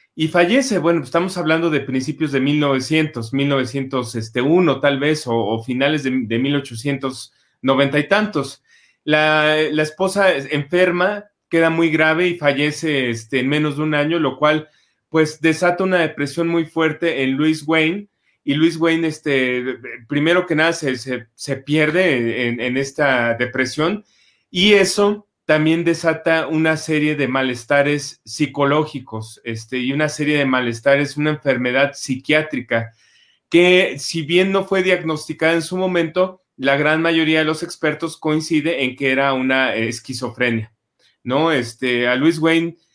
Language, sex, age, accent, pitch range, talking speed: Spanish, male, 30-49, Mexican, 130-165 Hz, 145 wpm